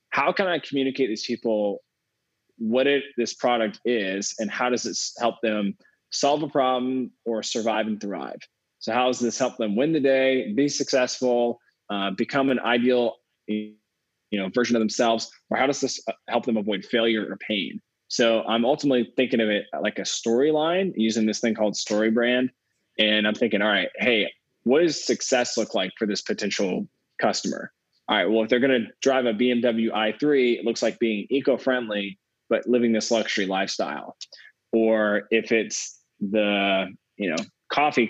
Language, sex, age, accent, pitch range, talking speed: English, male, 20-39, American, 105-125 Hz, 170 wpm